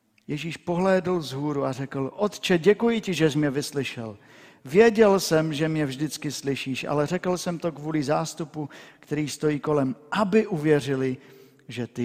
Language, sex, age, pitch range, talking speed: Czech, male, 50-69, 125-170 Hz, 160 wpm